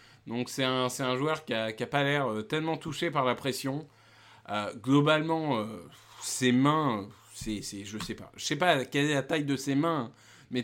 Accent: French